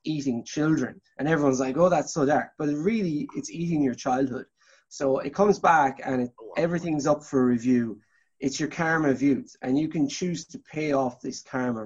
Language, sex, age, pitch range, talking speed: English, male, 20-39, 120-155 Hz, 190 wpm